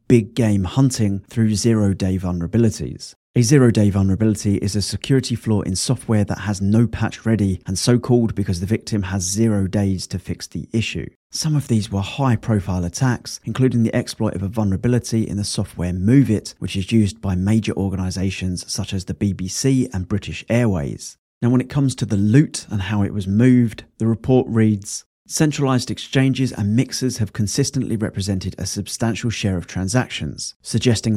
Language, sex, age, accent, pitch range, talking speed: English, male, 30-49, British, 95-120 Hz, 180 wpm